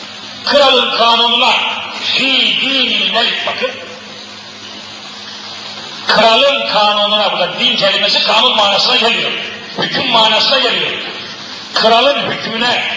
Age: 50-69